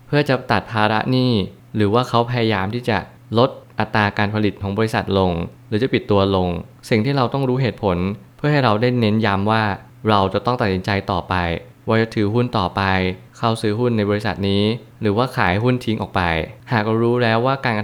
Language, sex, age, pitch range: Thai, male, 20-39, 100-120 Hz